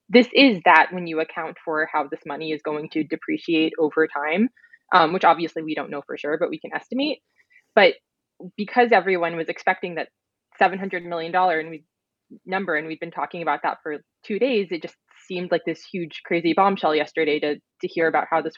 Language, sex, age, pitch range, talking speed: English, female, 20-39, 155-200 Hz, 195 wpm